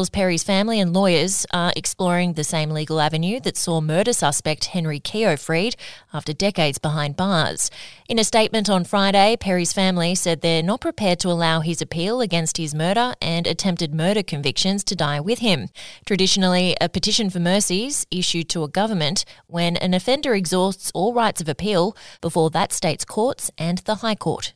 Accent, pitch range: Australian, 165-200 Hz